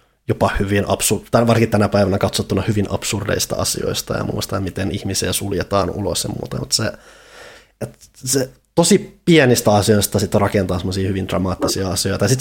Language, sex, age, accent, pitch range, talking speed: Finnish, male, 20-39, native, 95-110 Hz, 160 wpm